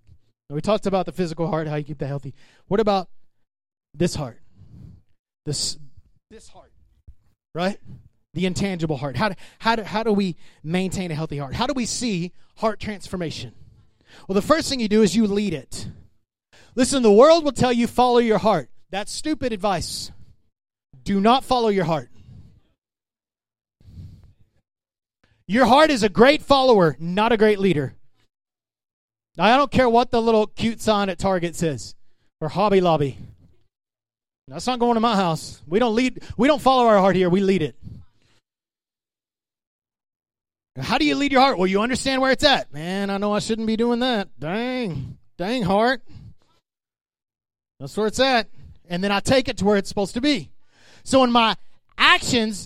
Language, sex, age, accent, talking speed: English, male, 30-49, American, 170 wpm